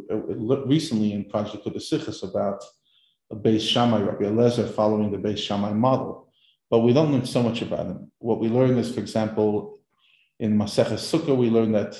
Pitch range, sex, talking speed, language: 105-115 Hz, male, 185 wpm, English